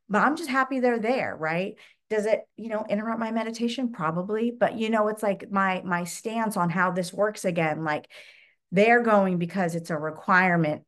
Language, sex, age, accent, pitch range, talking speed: English, female, 40-59, American, 170-220 Hz, 195 wpm